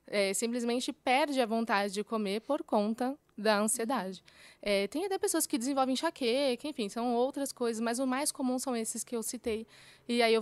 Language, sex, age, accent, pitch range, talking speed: Portuguese, female, 20-39, Brazilian, 210-250 Hz, 195 wpm